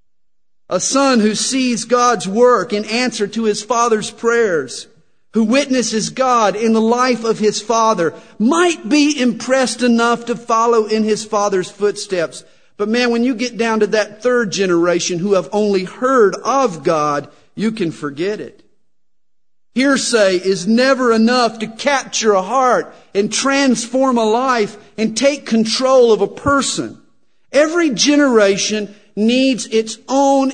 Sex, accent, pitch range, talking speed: male, American, 170-240 Hz, 145 wpm